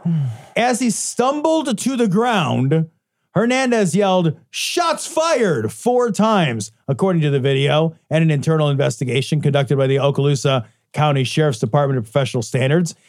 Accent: American